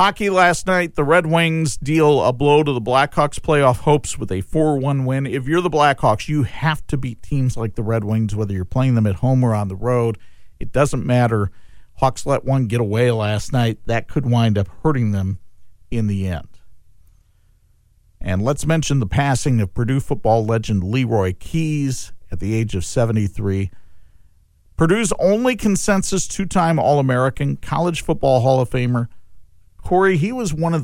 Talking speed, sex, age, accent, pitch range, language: 175 wpm, male, 50-69, American, 105-155 Hz, English